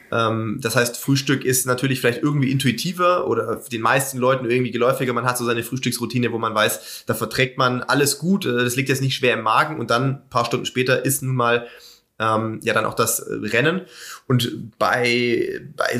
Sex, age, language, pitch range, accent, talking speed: male, 20-39, German, 115-135 Hz, German, 200 wpm